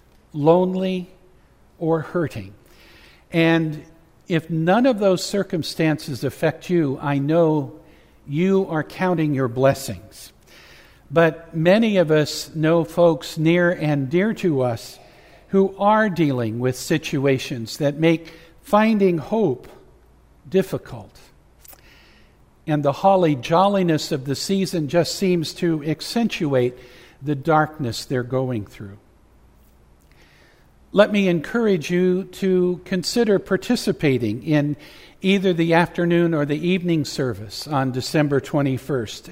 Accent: American